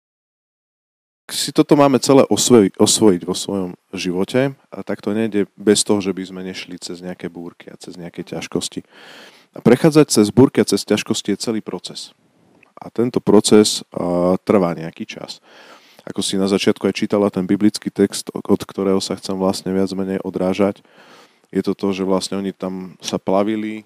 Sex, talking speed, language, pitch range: male, 175 wpm, Slovak, 90-105 Hz